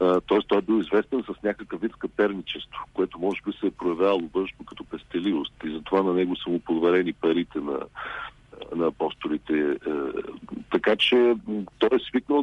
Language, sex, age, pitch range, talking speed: Bulgarian, male, 50-69, 95-150 Hz, 175 wpm